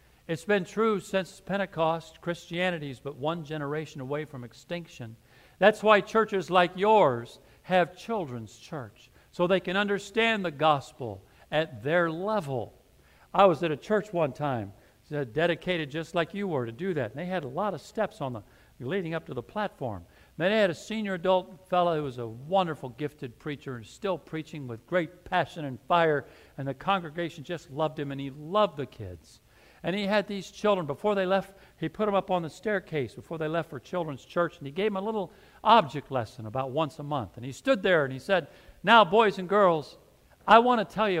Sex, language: male, English